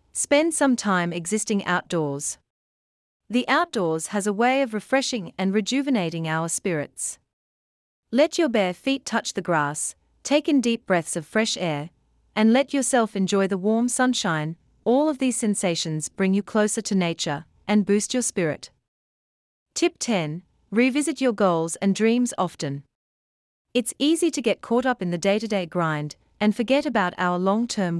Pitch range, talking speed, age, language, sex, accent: 165-240 Hz, 165 wpm, 40-59, English, female, Australian